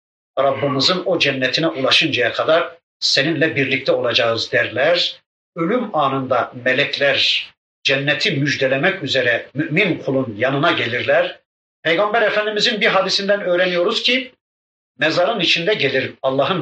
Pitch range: 140-190 Hz